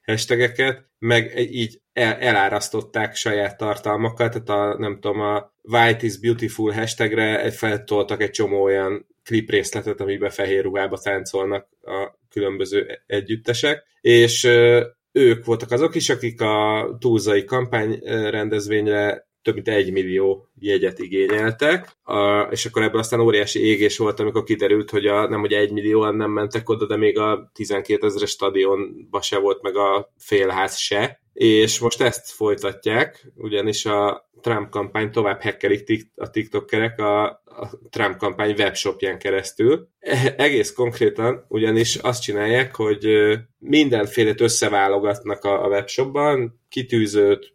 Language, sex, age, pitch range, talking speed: Hungarian, male, 20-39, 105-120 Hz, 130 wpm